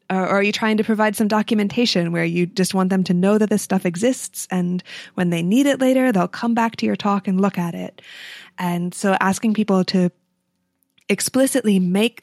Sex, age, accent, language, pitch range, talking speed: female, 20-39, American, English, 180-210 Hz, 205 wpm